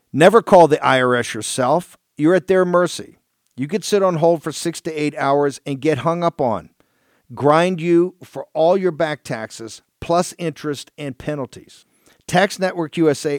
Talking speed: 170 wpm